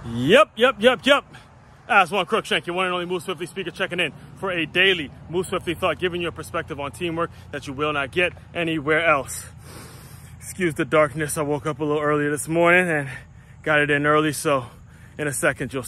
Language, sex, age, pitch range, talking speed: English, male, 20-39, 130-160 Hz, 210 wpm